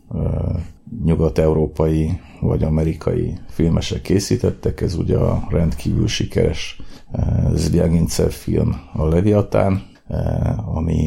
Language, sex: Hungarian, male